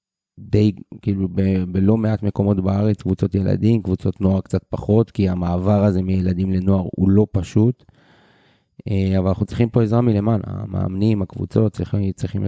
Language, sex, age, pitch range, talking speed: Hebrew, male, 30-49, 95-110 Hz, 150 wpm